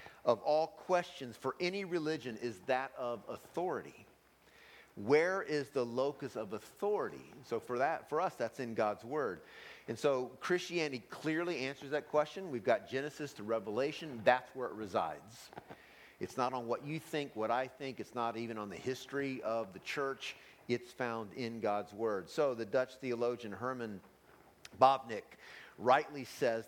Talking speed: 160 wpm